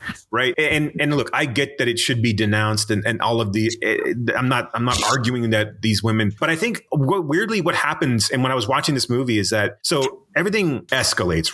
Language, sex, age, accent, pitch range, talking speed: English, male, 30-49, American, 105-125 Hz, 225 wpm